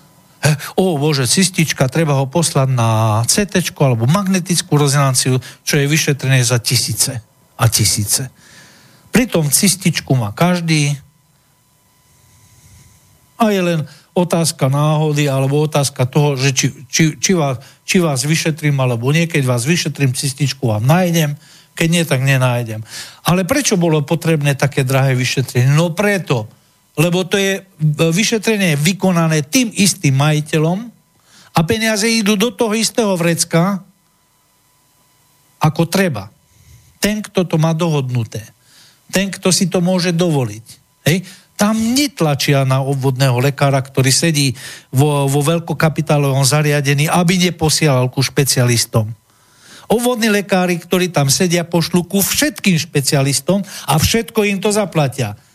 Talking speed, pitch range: 125 wpm, 135-180 Hz